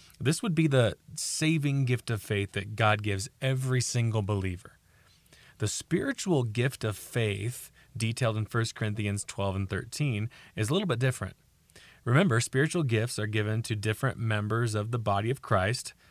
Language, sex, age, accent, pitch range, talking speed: English, male, 30-49, American, 105-130 Hz, 165 wpm